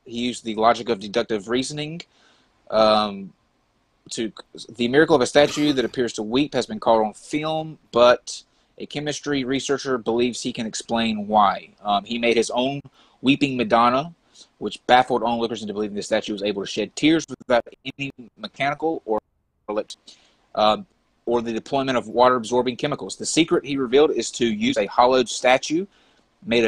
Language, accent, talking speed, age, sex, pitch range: English, American, 165 wpm, 30-49, male, 110-140 Hz